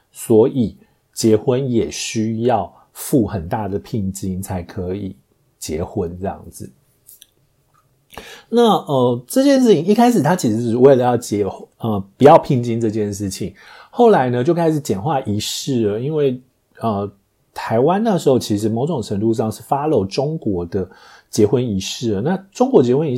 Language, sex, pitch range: Chinese, male, 100-140 Hz